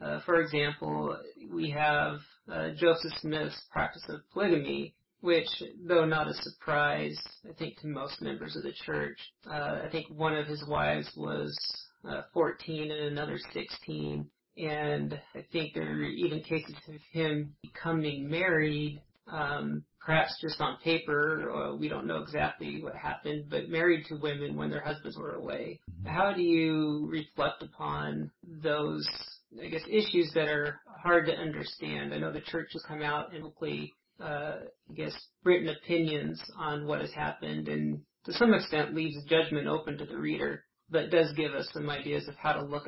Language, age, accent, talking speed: English, 40-59, American, 170 wpm